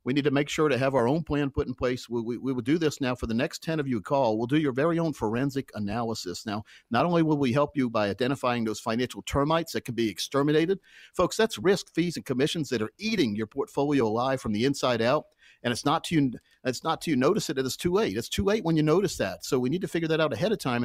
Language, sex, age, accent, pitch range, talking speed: English, male, 50-69, American, 115-150 Hz, 275 wpm